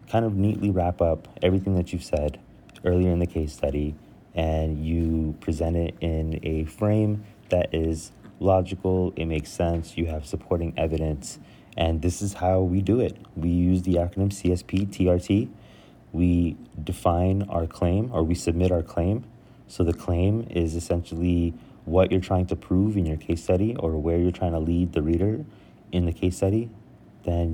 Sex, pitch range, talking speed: male, 80-95 Hz, 175 wpm